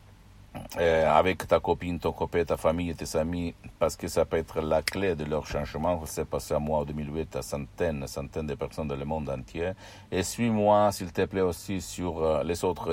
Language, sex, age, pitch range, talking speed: Italian, male, 60-79, 80-95 Hz, 210 wpm